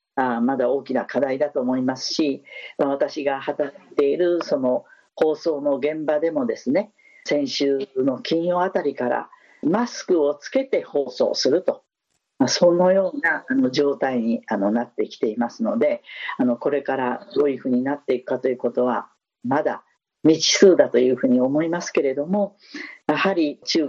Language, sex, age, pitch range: Japanese, female, 50-69, 135-195 Hz